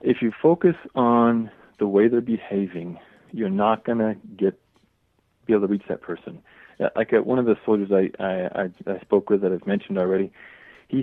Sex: male